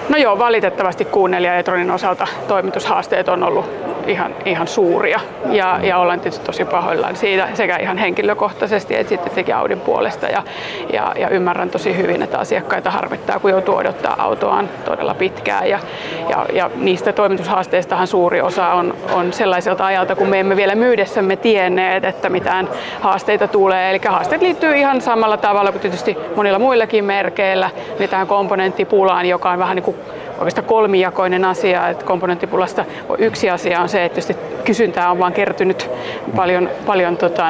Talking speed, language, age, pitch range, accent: 160 wpm, Finnish, 30-49, 185-215 Hz, native